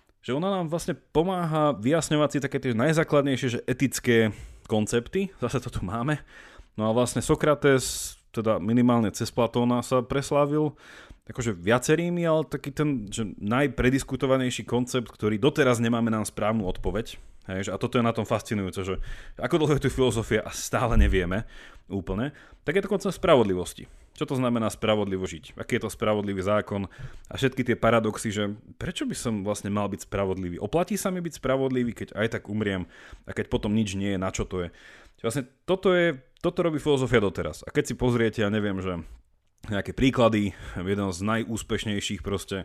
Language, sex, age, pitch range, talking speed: Slovak, male, 30-49, 100-130 Hz, 175 wpm